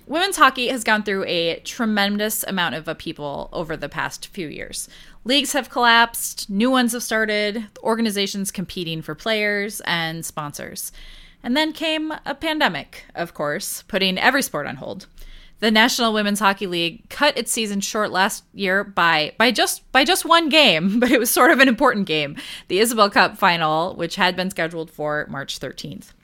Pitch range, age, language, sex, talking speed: 175-255 Hz, 20-39, English, female, 175 wpm